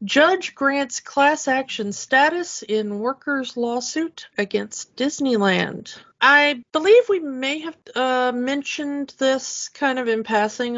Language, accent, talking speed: English, American, 120 wpm